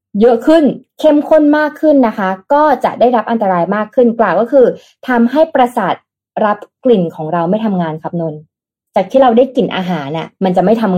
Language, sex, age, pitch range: Thai, female, 20-39, 175-235 Hz